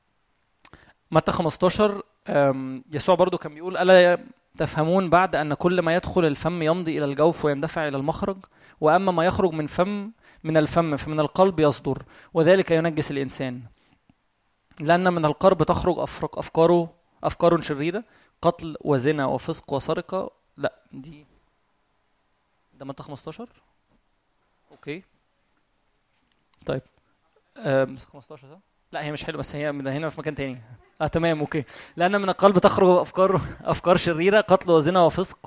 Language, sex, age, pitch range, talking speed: Arabic, male, 20-39, 150-180 Hz, 130 wpm